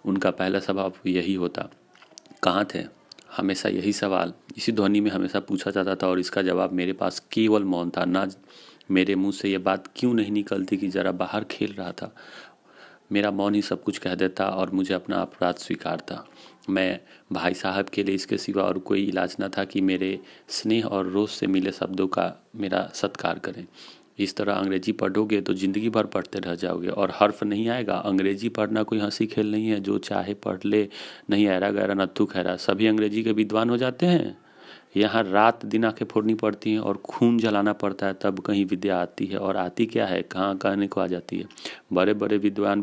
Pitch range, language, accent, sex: 95-105 Hz, Hindi, native, male